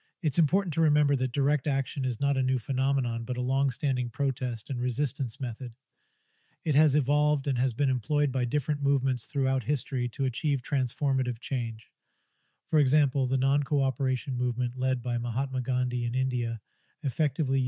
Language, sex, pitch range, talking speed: English, male, 130-145 Hz, 160 wpm